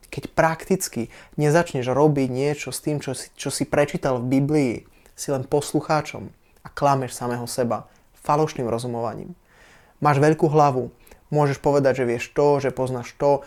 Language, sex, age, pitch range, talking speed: Slovak, male, 20-39, 130-150 Hz, 150 wpm